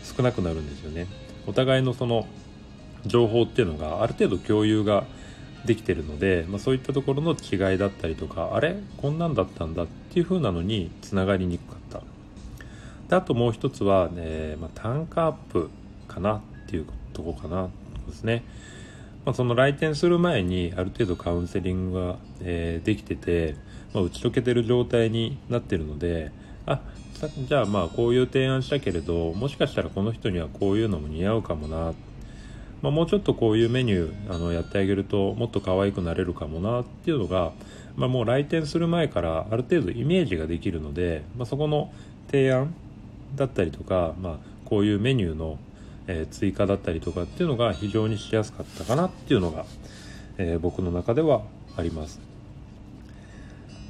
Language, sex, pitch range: Japanese, male, 90-130 Hz